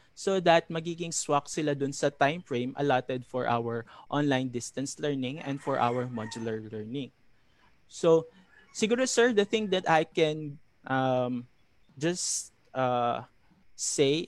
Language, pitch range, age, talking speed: Filipino, 130-165 Hz, 20-39, 135 wpm